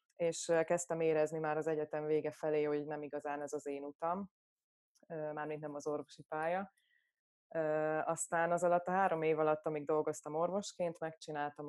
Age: 20-39